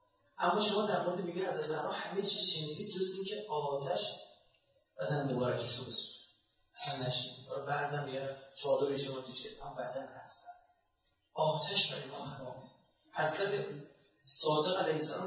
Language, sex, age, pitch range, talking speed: Persian, male, 40-59, 140-215 Hz, 105 wpm